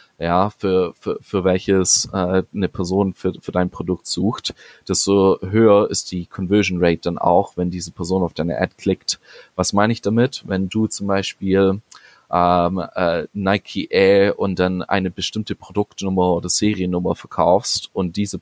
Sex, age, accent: male, 20-39, German